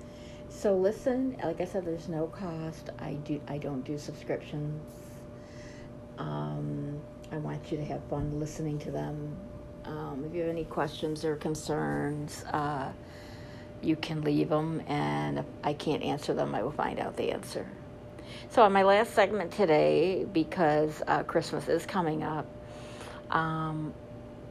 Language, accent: English, American